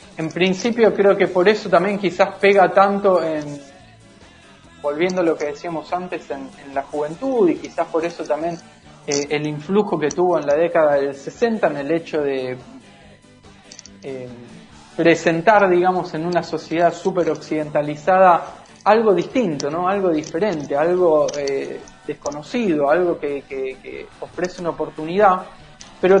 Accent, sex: Argentinian, male